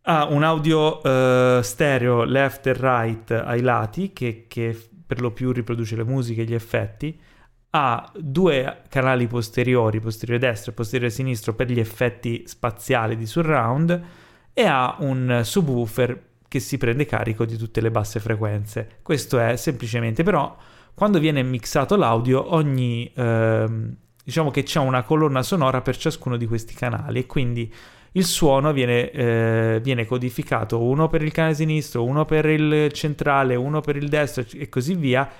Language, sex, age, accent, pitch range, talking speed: Italian, male, 30-49, native, 120-150 Hz, 155 wpm